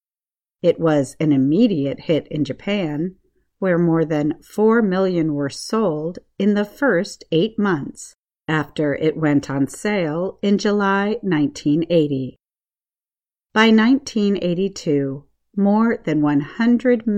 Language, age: Chinese, 50-69